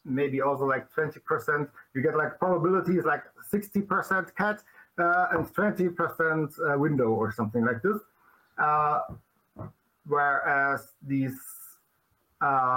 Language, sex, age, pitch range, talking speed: English, male, 50-69, 145-185 Hz, 115 wpm